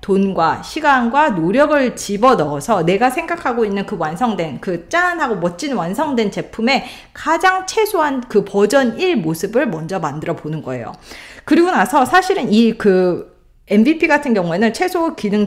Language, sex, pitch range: Korean, female, 180-280 Hz